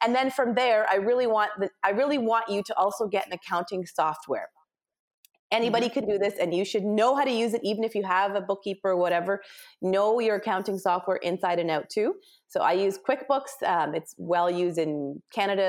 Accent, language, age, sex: American, English, 30-49, female